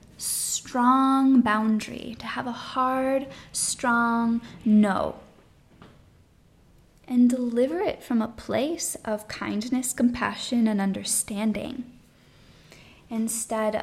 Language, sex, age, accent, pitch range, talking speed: English, female, 10-29, American, 210-245 Hz, 85 wpm